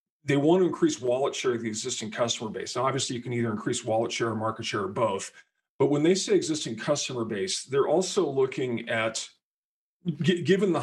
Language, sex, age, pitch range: English, male, 40-59, 115-145 Hz